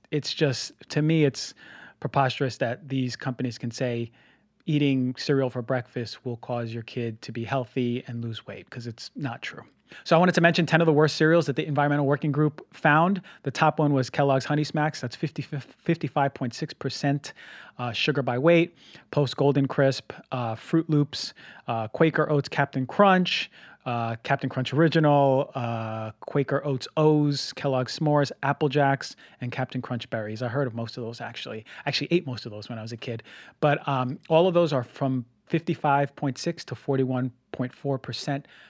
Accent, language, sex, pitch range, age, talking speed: American, English, male, 125-150 Hz, 30-49, 180 wpm